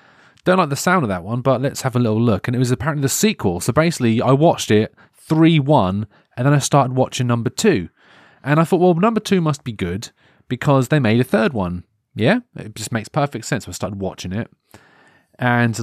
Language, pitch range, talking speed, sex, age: English, 110-155 Hz, 230 wpm, male, 30-49